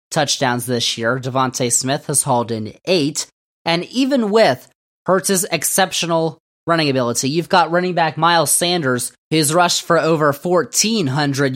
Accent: American